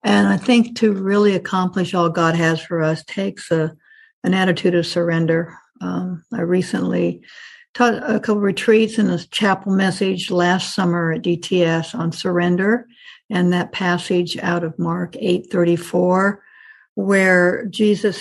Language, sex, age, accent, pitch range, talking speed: English, female, 60-79, American, 170-210 Hz, 155 wpm